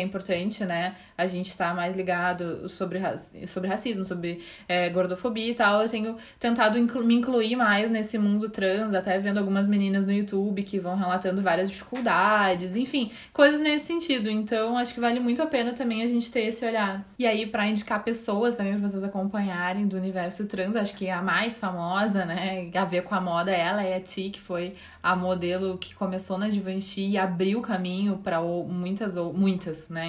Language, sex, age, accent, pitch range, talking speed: Portuguese, female, 20-39, Brazilian, 180-215 Hz, 185 wpm